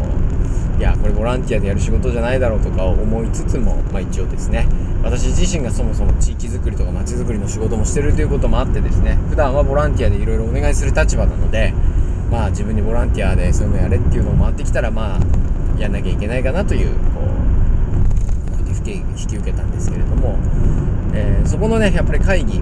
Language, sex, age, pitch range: Japanese, male, 20-39, 85-95 Hz